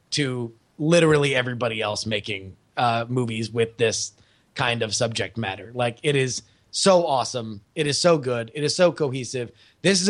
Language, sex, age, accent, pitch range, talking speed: English, male, 30-49, American, 115-150 Hz, 165 wpm